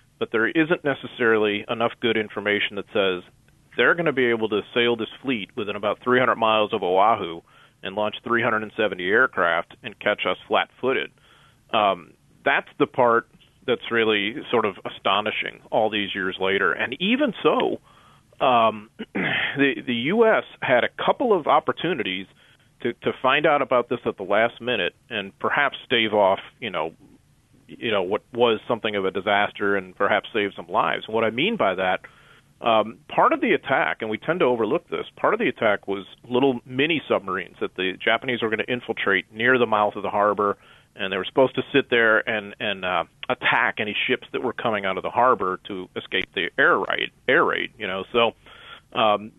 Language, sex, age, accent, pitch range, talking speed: English, male, 40-59, American, 100-125 Hz, 185 wpm